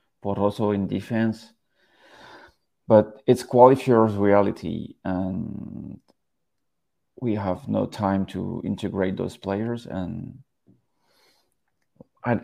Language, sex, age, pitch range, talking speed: English, male, 30-49, 100-110 Hz, 85 wpm